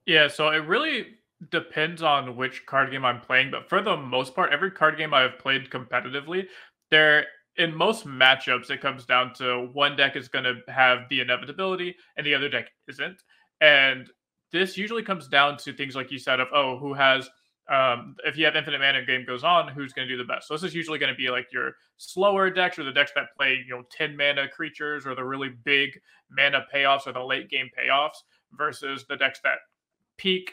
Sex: male